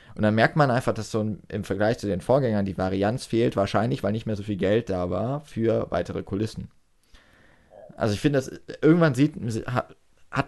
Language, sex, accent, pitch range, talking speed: German, male, German, 105-135 Hz, 195 wpm